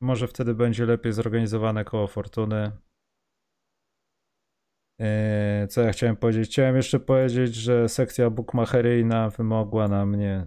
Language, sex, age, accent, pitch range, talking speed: Polish, male, 30-49, native, 105-125 Hz, 115 wpm